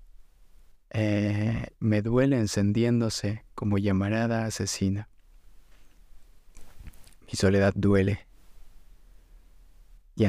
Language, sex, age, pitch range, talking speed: Spanish, male, 20-39, 90-105 Hz, 70 wpm